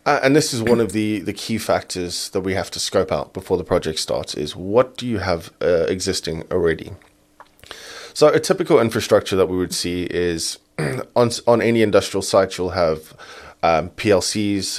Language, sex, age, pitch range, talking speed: German, male, 20-39, 90-115 Hz, 185 wpm